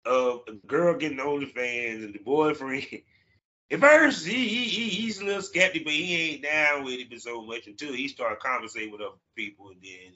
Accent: American